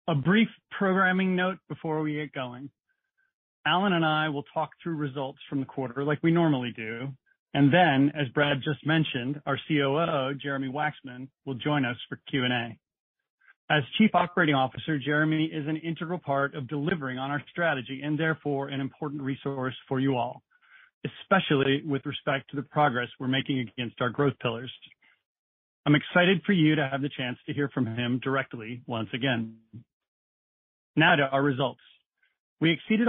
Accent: American